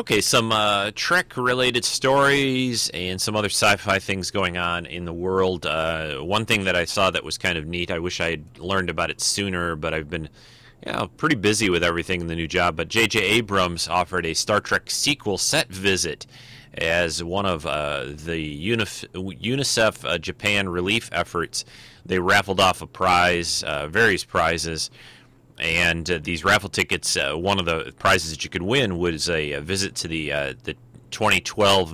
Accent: American